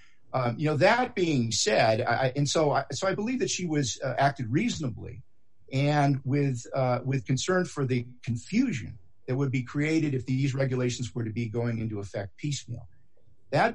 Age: 50-69